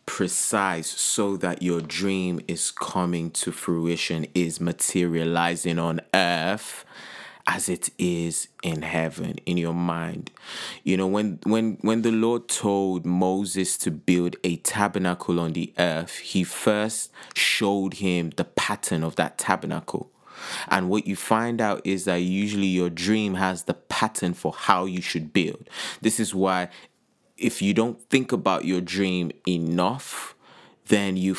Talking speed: 145 wpm